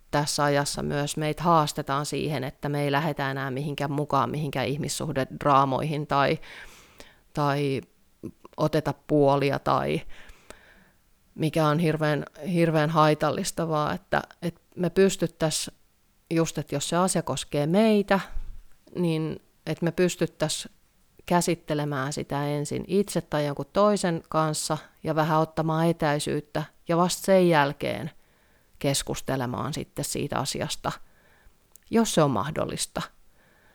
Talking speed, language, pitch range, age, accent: 115 wpm, Finnish, 140-165 Hz, 30-49, native